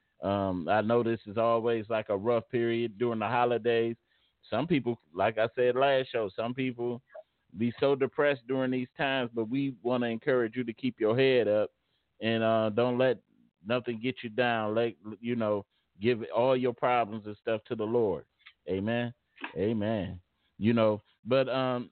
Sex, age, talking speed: male, 30-49, 180 wpm